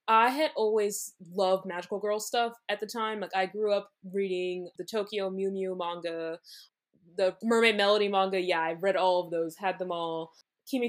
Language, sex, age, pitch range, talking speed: English, female, 20-39, 175-215 Hz, 185 wpm